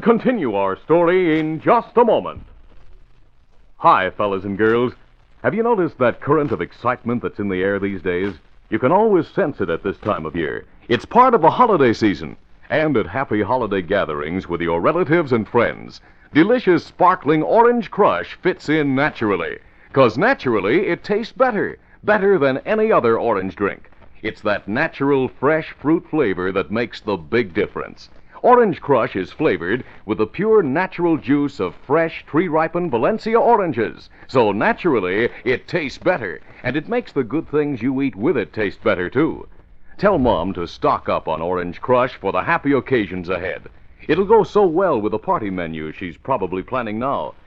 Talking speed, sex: 170 wpm, male